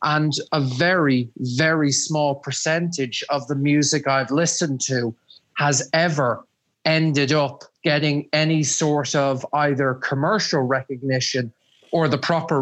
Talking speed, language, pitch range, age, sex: 125 wpm, English, 135-155 Hz, 30-49, male